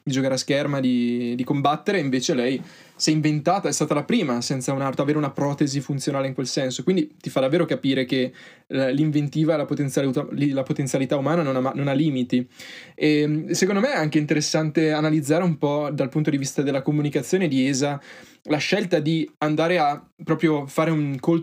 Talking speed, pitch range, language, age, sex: 180 wpm, 135-160 Hz, Italian, 20-39, male